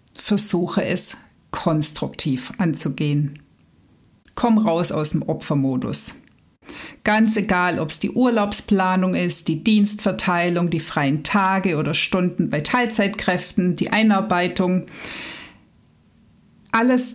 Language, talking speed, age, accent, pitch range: German, 100 wpm, 50-69, German, 160-225 Hz